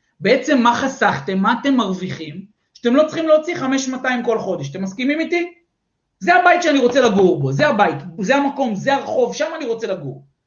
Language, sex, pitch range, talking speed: Hebrew, male, 205-285 Hz, 185 wpm